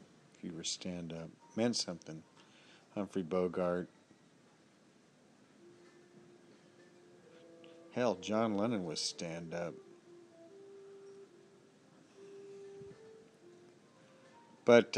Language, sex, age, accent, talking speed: English, male, 50-69, American, 55 wpm